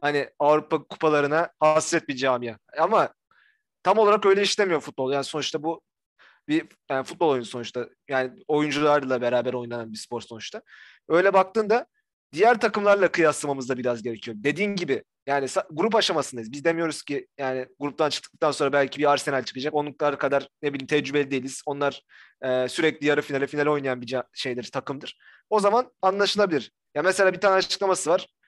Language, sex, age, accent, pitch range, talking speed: Turkish, male, 30-49, native, 140-185 Hz, 160 wpm